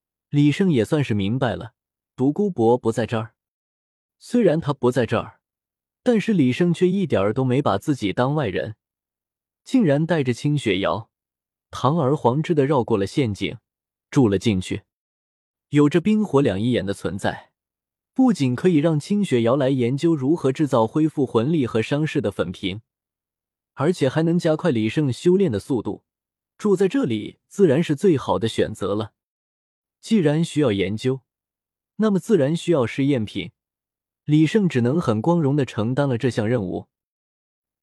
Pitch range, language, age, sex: 110-165 Hz, Chinese, 20-39, male